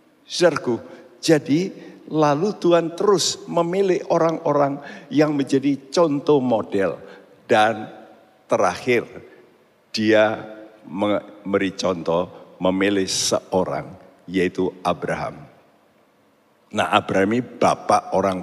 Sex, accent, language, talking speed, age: male, native, Indonesian, 80 wpm, 60-79